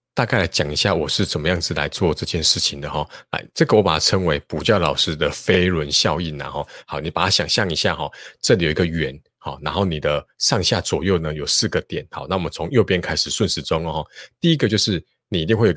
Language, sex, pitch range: Chinese, male, 80-105 Hz